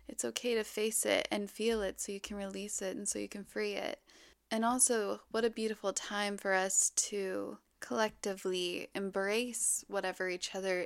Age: 20-39